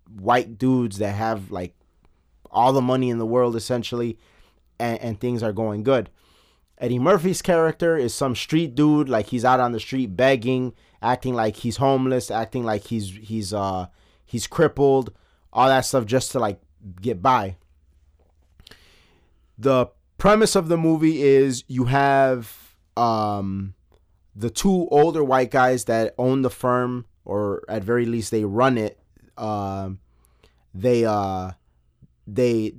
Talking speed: 145 wpm